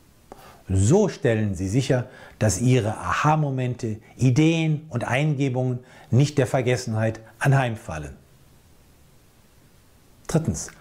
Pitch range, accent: 105-145 Hz, German